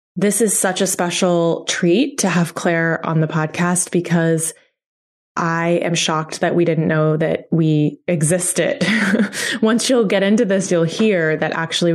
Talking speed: 160 wpm